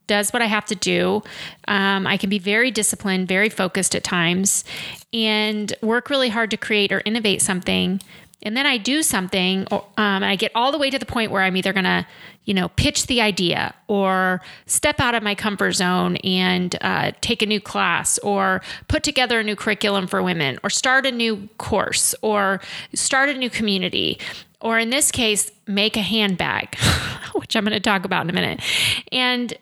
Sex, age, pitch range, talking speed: female, 30-49, 190-225 Hz, 200 wpm